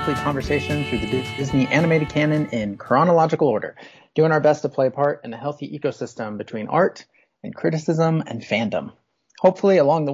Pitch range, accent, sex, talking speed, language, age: 120-150 Hz, American, male, 170 wpm, English, 30-49